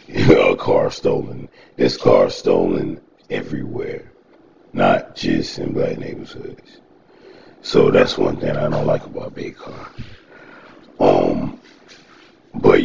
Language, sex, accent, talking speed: English, male, American, 110 wpm